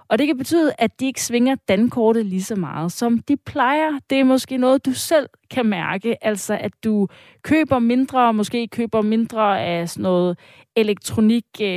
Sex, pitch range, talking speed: female, 200-245 Hz, 180 wpm